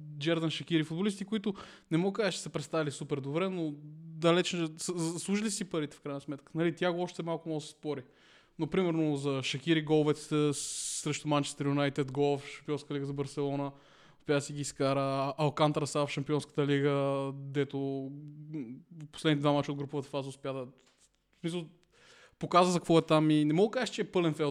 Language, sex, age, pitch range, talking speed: Bulgarian, male, 20-39, 140-165 Hz, 185 wpm